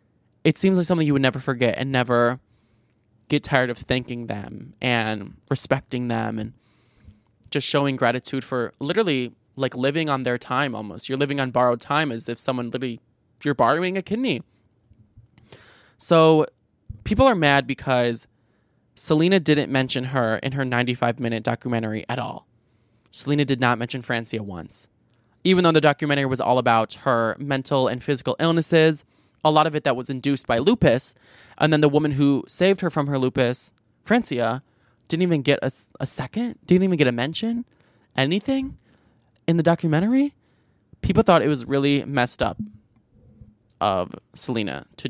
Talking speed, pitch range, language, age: 160 wpm, 115-150 Hz, English, 20-39